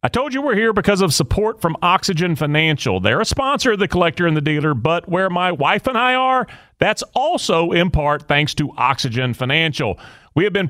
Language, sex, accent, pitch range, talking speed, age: English, male, American, 125-180 Hz, 215 wpm, 40-59